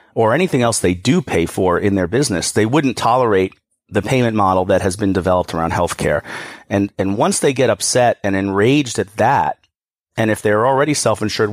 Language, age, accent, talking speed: English, 40-59, American, 195 wpm